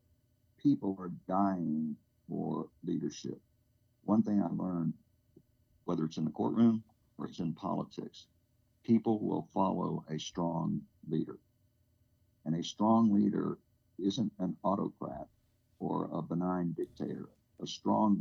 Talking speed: 120 wpm